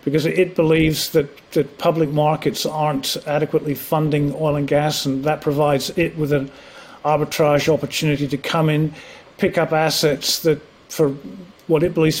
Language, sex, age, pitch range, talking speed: English, male, 40-59, 150-165 Hz, 155 wpm